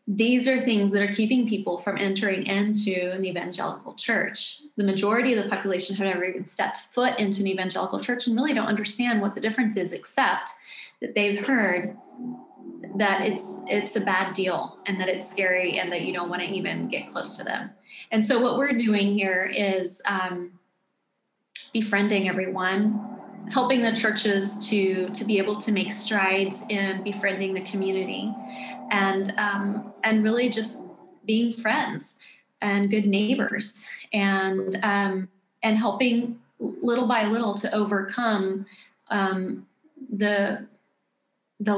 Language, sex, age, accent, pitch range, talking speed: English, female, 20-39, American, 190-220 Hz, 150 wpm